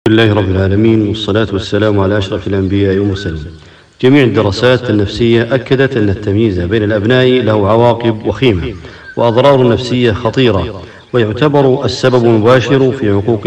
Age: 50-69